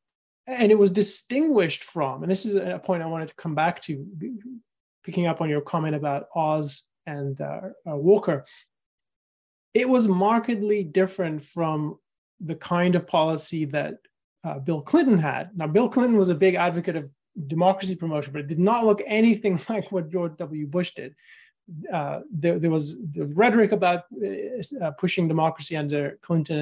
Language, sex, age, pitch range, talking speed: English, male, 30-49, 155-200 Hz, 170 wpm